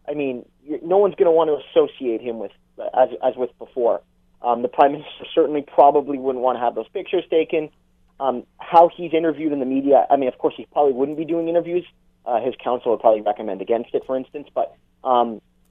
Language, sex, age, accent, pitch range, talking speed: English, male, 30-49, American, 120-150 Hz, 220 wpm